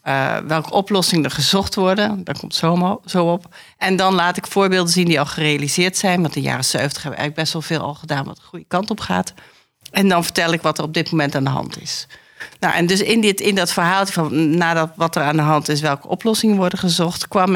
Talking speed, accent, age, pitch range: 245 wpm, Dutch, 40-59, 155-190 Hz